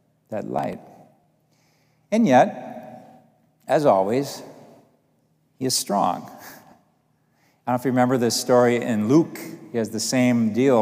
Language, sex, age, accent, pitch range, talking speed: English, male, 50-69, American, 110-135 Hz, 135 wpm